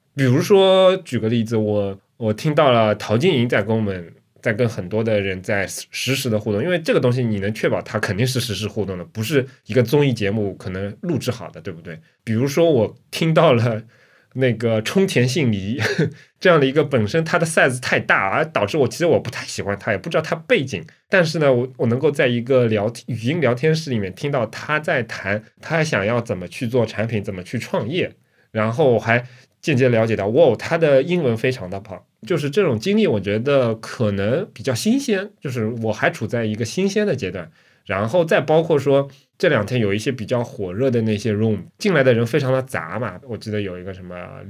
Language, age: Chinese, 20-39